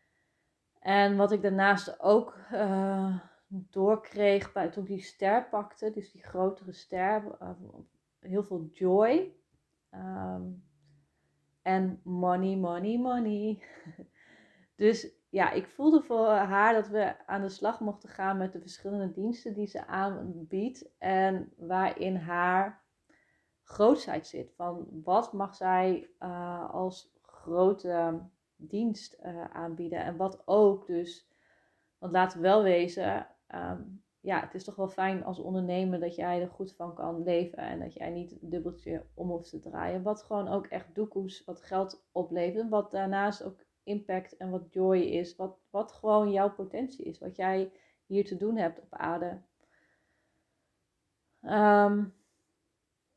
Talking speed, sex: 140 wpm, female